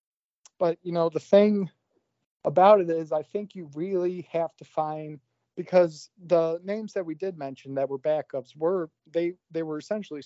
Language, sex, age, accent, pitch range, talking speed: English, male, 40-59, American, 135-165 Hz, 175 wpm